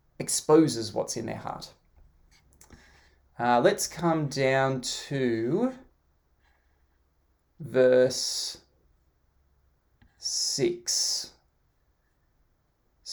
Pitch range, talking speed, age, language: 115-140 Hz, 50 wpm, 20-39, English